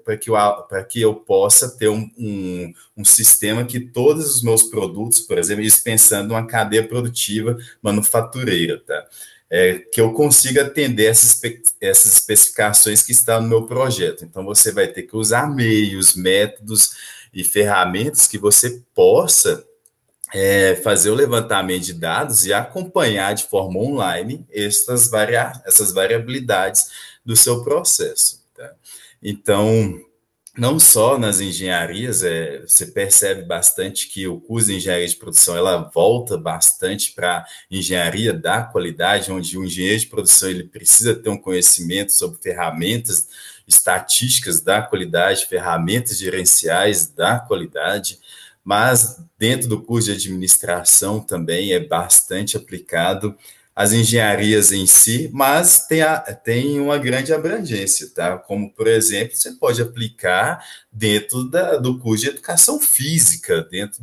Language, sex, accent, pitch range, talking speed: Portuguese, male, Brazilian, 100-125 Hz, 130 wpm